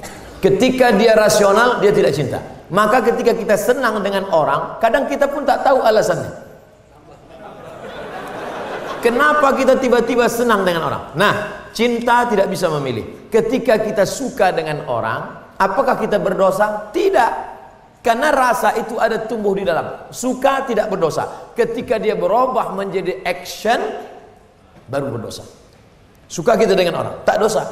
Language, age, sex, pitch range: Indonesian, 40-59, male, 175-235 Hz